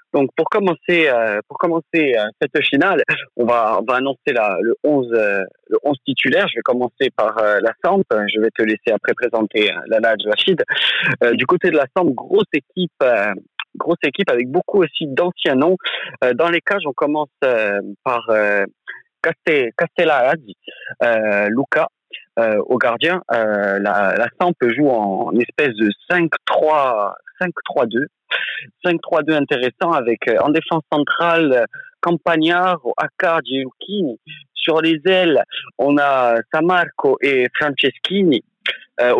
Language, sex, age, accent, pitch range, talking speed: French, male, 30-49, French, 120-170 Hz, 155 wpm